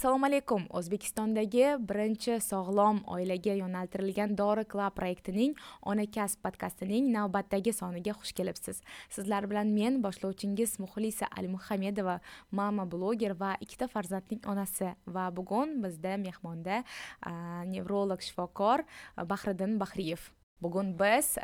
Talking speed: 105 wpm